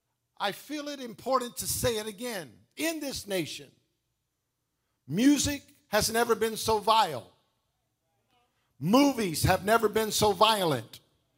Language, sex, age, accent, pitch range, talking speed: English, male, 50-69, American, 135-225 Hz, 120 wpm